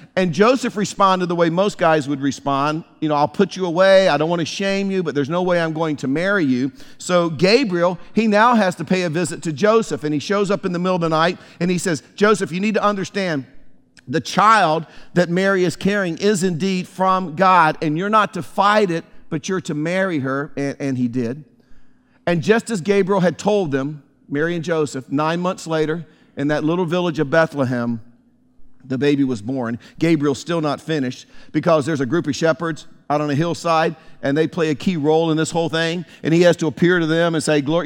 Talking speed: 225 wpm